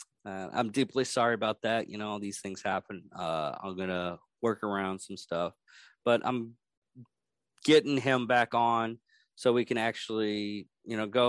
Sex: male